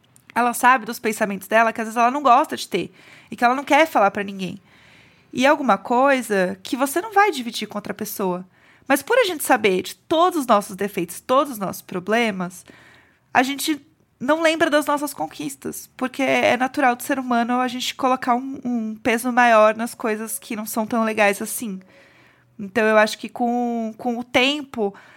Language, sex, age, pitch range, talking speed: Portuguese, female, 20-39, 215-255 Hz, 195 wpm